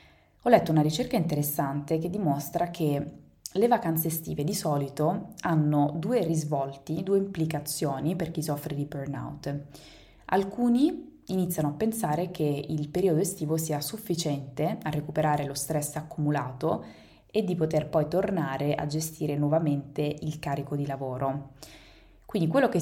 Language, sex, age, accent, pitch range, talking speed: Italian, female, 20-39, native, 145-175 Hz, 140 wpm